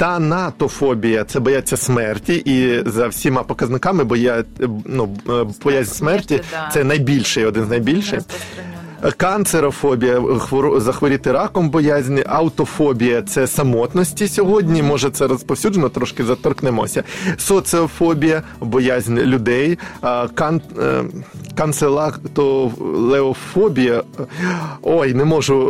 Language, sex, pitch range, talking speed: Ukrainian, male, 125-170 Hz, 100 wpm